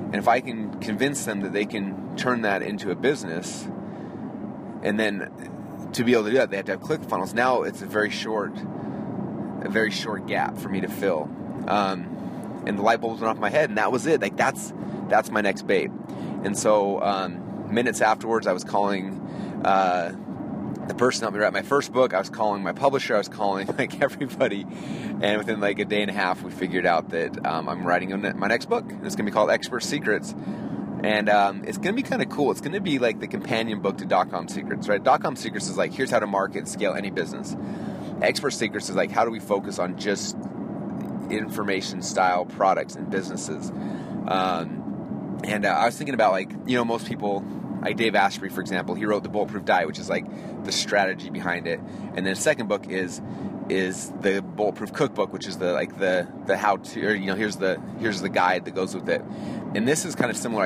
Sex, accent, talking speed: male, American, 220 wpm